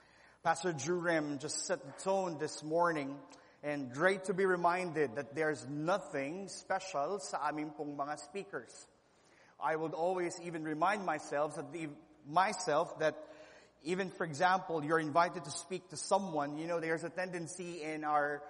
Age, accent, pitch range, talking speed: 30-49, native, 150-180 Hz, 150 wpm